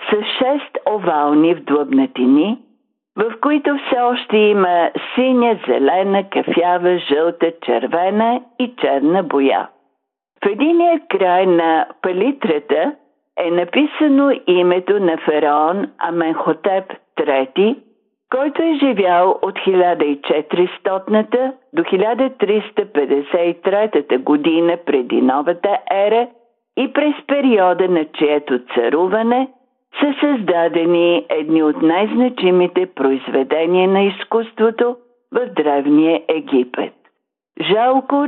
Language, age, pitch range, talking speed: Bulgarian, 50-69, 165-245 Hz, 90 wpm